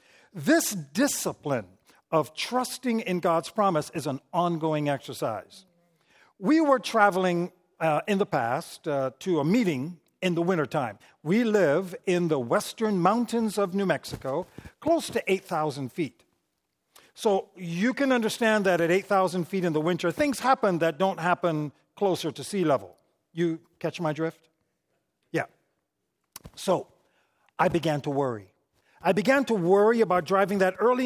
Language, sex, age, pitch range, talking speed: English, male, 50-69, 160-215 Hz, 145 wpm